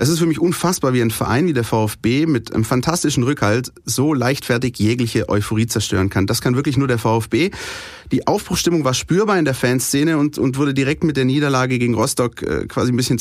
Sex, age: male, 30-49